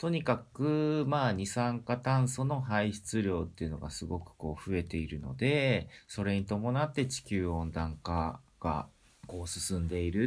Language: Japanese